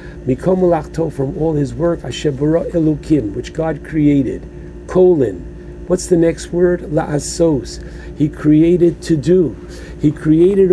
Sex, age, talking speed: male, 60-79, 125 wpm